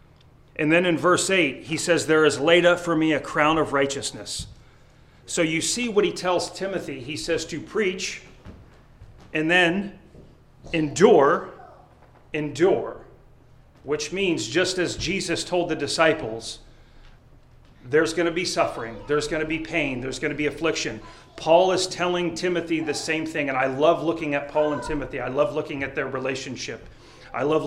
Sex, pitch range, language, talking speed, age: male, 140-170 Hz, English, 170 wpm, 40-59